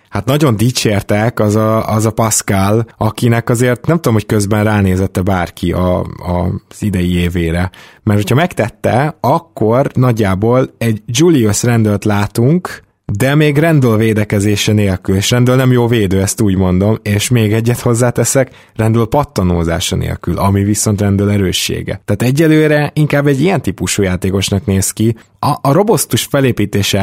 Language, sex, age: Hungarian, male, 20-39